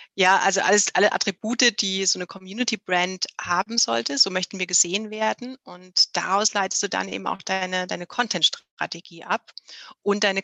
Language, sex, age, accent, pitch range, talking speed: German, female, 30-49, German, 180-210 Hz, 165 wpm